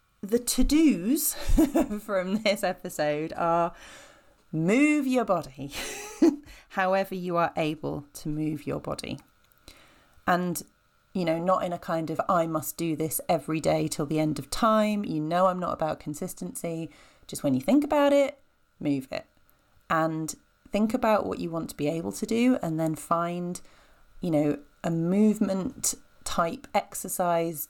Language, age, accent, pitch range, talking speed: English, 30-49, British, 155-215 Hz, 150 wpm